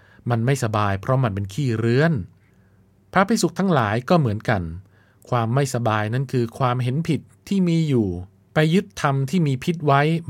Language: Thai